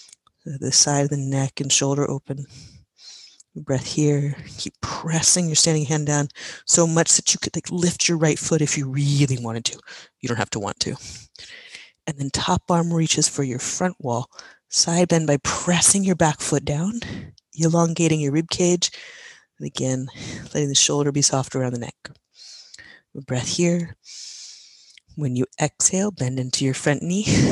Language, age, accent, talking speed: English, 30-49, American, 170 wpm